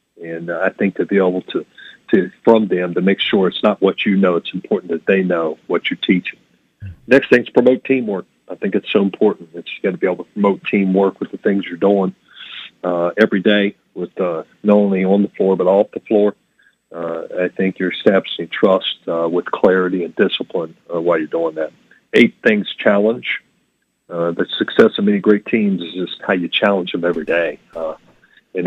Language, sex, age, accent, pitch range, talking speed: English, male, 40-59, American, 85-100 Hz, 210 wpm